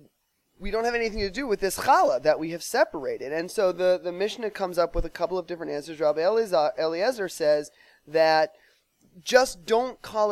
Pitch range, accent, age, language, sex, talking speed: 160-205 Hz, American, 20-39, English, male, 190 wpm